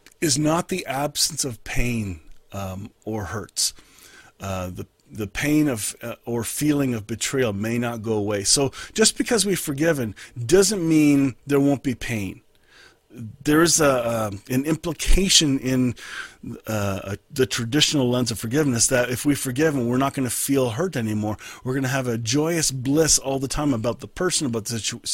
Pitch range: 115-155 Hz